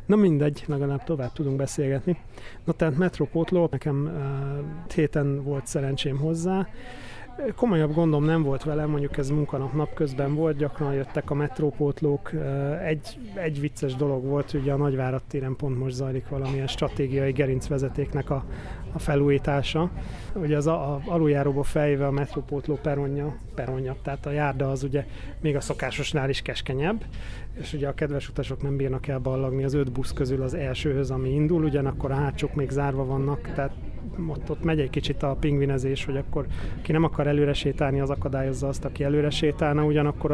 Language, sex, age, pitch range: Hungarian, male, 30-49, 135-155 Hz